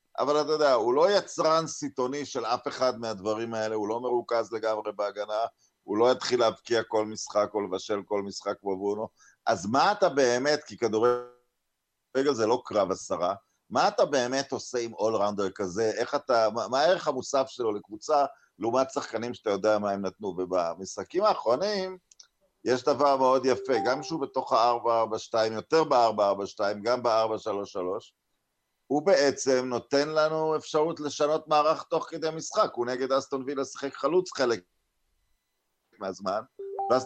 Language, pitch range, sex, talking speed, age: Hebrew, 110-150 Hz, male, 155 wpm, 50-69